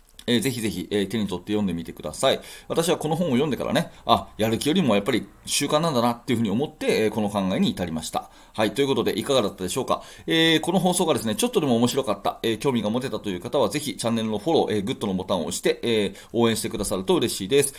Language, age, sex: Japanese, 30-49, male